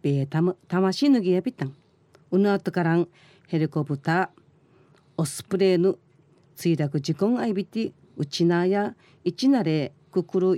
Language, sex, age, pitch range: Japanese, female, 40-59, 155-205 Hz